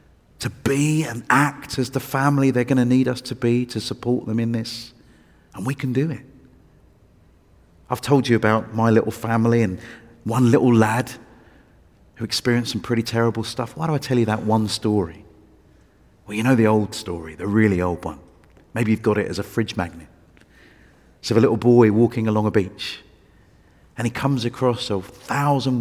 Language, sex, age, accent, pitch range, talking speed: English, male, 40-59, British, 100-130 Hz, 190 wpm